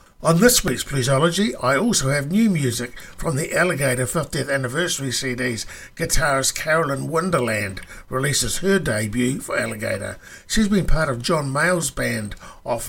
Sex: male